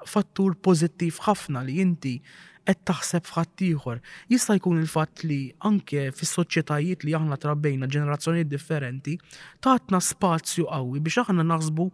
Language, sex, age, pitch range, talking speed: English, male, 20-39, 150-185 Hz, 120 wpm